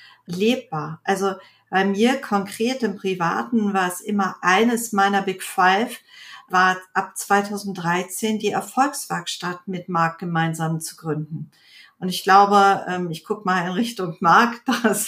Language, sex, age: German, female, 50-69